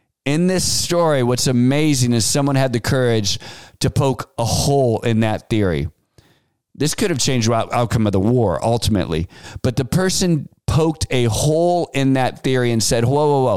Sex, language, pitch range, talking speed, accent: male, English, 115-145 Hz, 180 wpm, American